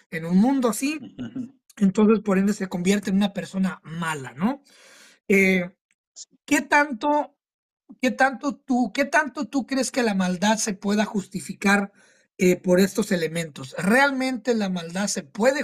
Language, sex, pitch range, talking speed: Spanish, male, 180-245 Hz, 135 wpm